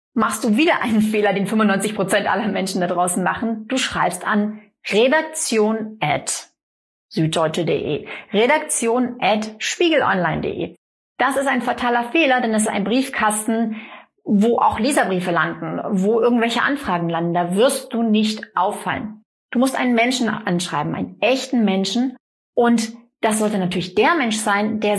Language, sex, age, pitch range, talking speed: German, female, 30-49, 200-250 Hz, 135 wpm